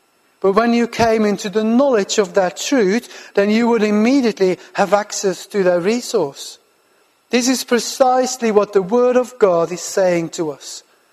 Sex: male